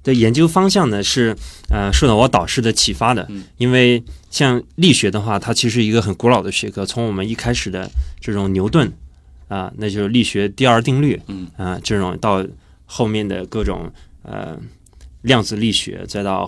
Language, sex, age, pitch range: Chinese, male, 20-39, 95-120 Hz